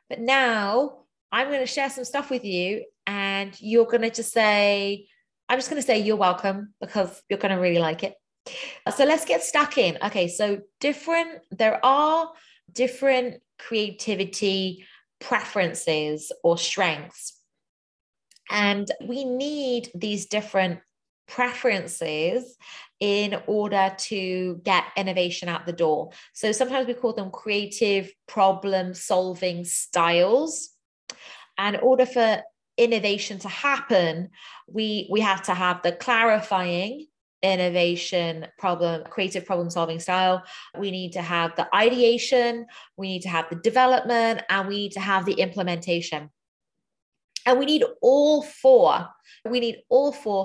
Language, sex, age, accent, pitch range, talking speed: English, female, 30-49, British, 185-245 Hz, 135 wpm